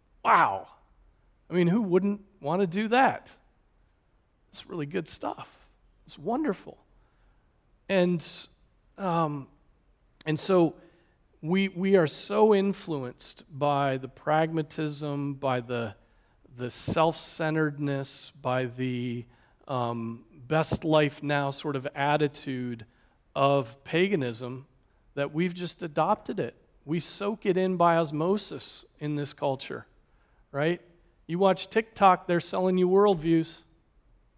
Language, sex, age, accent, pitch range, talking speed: English, male, 40-59, American, 130-175 Hz, 110 wpm